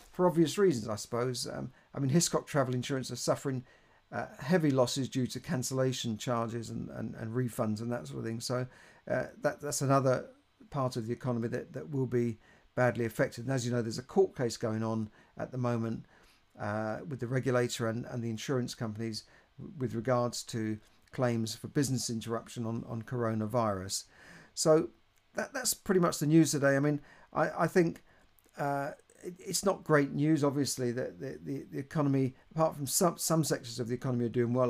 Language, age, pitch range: English, 50-69, 120-145 Hz